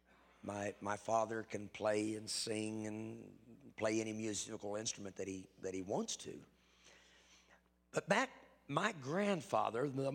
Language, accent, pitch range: English, American, 100-165 Hz